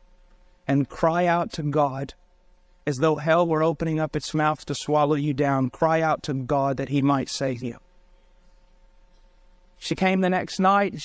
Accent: American